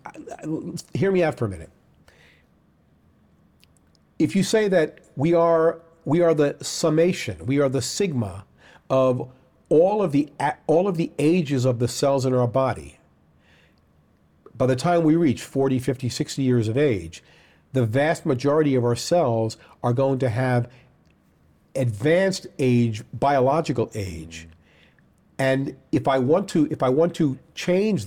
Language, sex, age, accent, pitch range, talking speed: English, male, 50-69, American, 120-165 Hz, 150 wpm